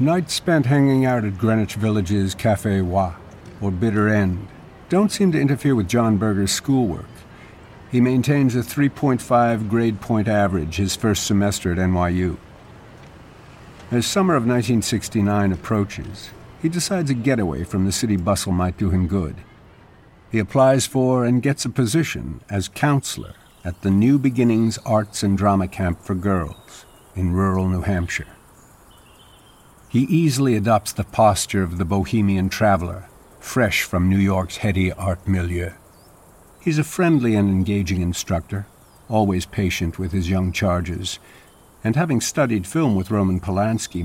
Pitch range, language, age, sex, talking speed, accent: 95-120 Hz, English, 60-79, male, 145 wpm, American